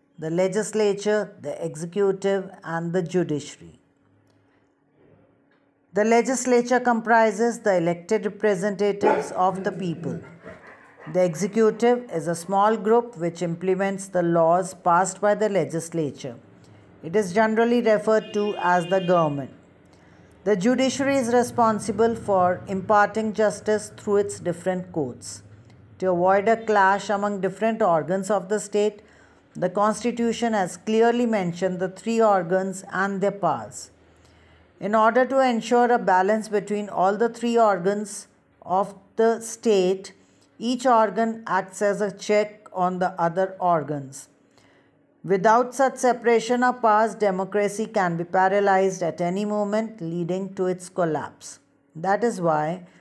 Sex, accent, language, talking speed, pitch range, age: female, Indian, English, 130 wpm, 180-220 Hz, 50-69